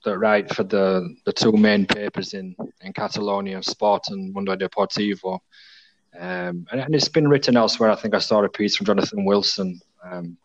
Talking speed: 185 wpm